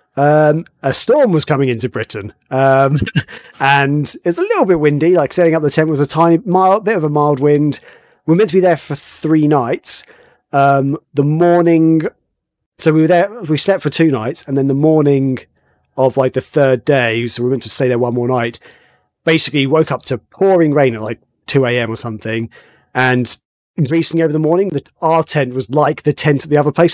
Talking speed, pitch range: 215 wpm, 130-165 Hz